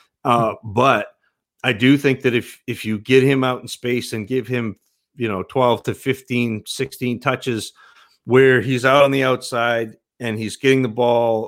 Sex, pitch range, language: male, 125-155 Hz, English